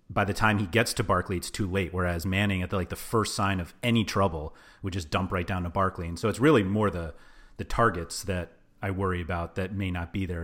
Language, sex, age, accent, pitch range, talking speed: English, male, 30-49, American, 95-110 Hz, 260 wpm